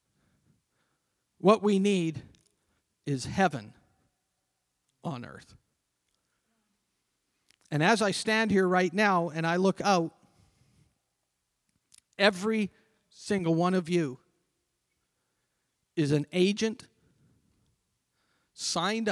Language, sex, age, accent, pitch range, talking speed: English, male, 50-69, American, 135-190 Hz, 85 wpm